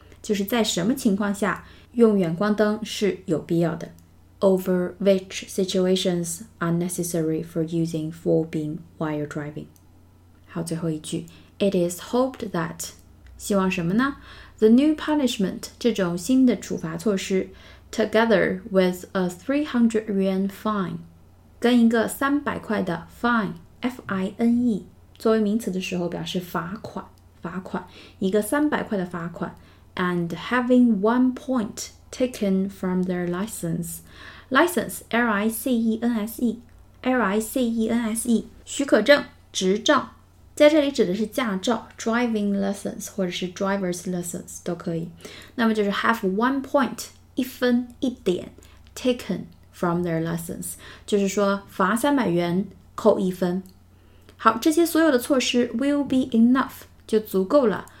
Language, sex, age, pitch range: Chinese, female, 20-39, 175-235 Hz